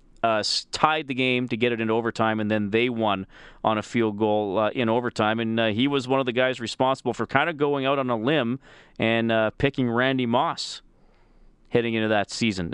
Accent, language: American, English